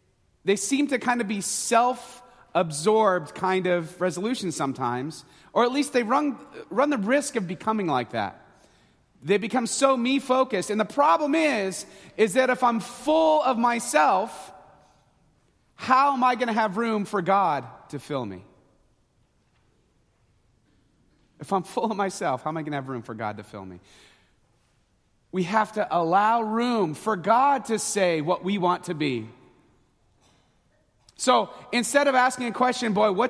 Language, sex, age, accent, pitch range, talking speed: English, male, 30-49, American, 150-235 Hz, 160 wpm